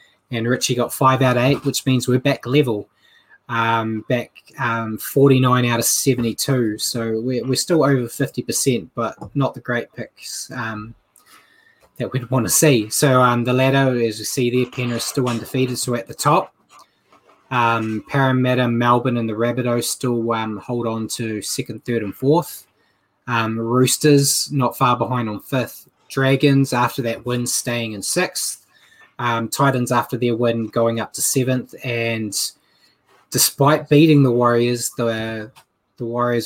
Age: 20-39